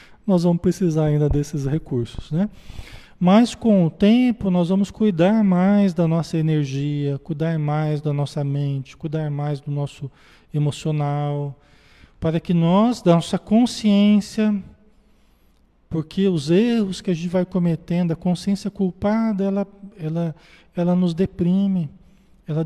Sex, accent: male, Brazilian